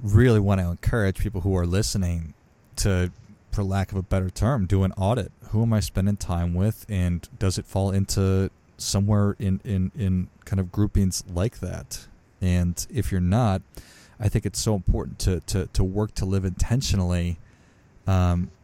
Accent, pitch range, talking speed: American, 90-105 Hz, 175 wpm